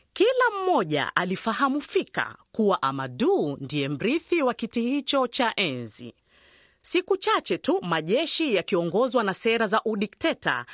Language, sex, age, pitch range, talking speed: Swahili, female, 30-49, 190-285 Hz, 125 wpm